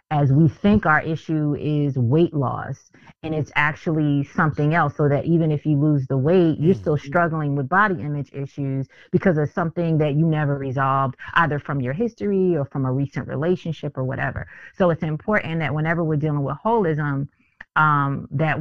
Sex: female